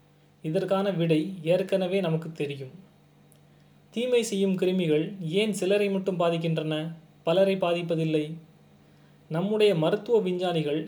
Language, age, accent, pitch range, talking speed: Tamil, 30-49, native, 155-190 Hz, 95 wpm